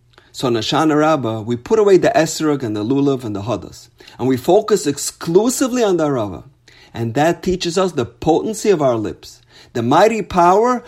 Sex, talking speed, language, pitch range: male, 195 wpm, English, 120-180 Hz